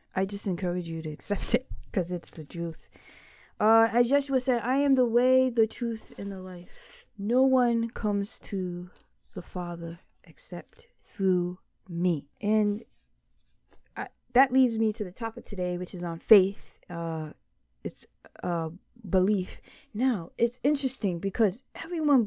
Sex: female